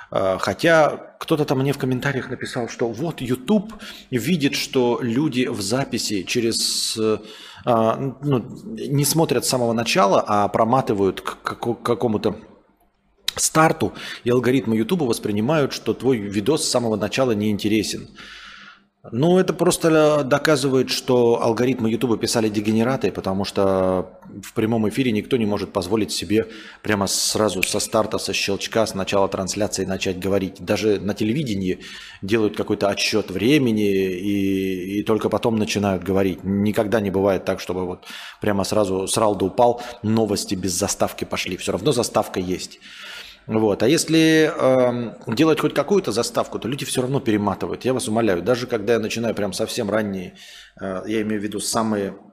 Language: Russian